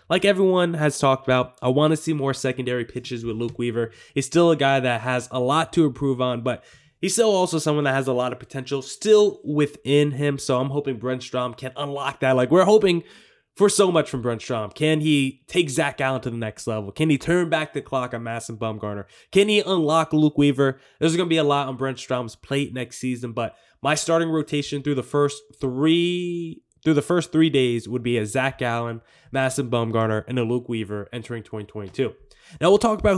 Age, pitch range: 20-39, 125-160 Hz